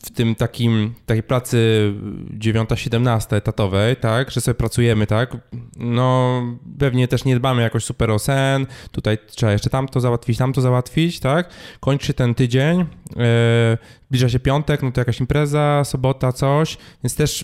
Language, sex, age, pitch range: Polish, male, 20-39, 105-130 Hz